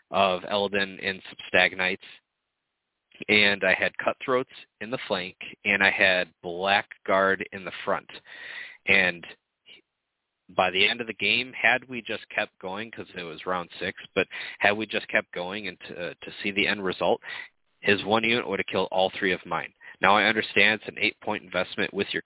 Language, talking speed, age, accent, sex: English, 180 wpm, 30-49, American, male